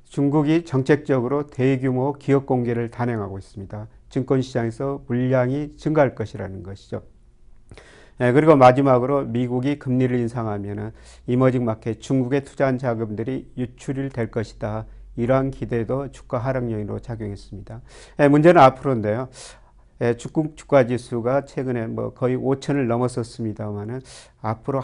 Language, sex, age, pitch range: Korean, male, 40-59, 115-135 Hz